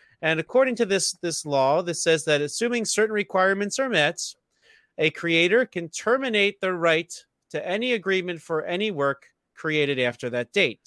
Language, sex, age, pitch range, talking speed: English, male, 40-59, 140-190 Hz, 165 wpm